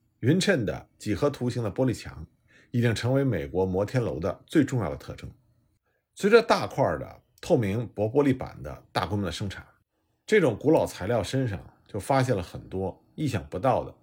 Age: 50-69